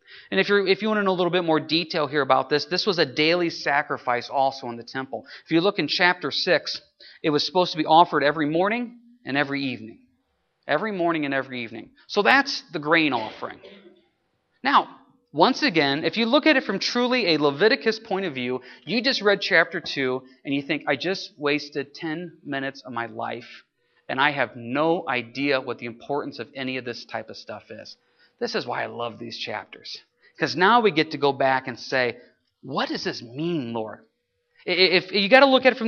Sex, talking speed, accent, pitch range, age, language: male, 215 wpm, American, 140-215 Hz, 30-49, English